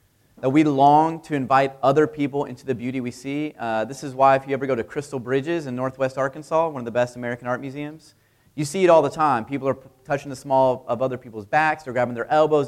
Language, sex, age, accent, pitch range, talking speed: English, male, 30-49, American, 120-150 Hz, 245 wpm